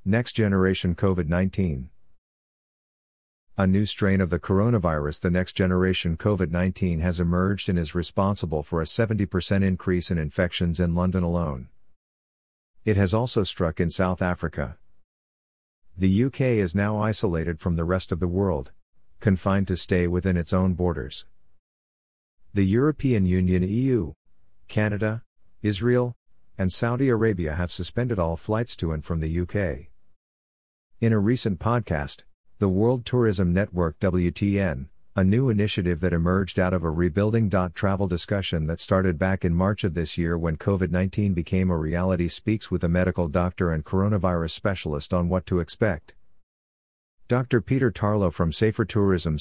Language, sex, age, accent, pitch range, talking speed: English, male, 50-69, American, 85-100 Hz, 145 wpm